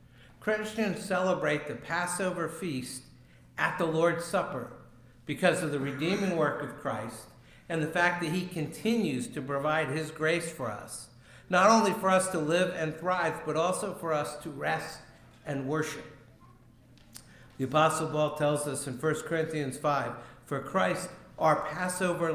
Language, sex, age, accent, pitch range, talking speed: English, male, 60-79, American, 125-165 Hz, 155 wpm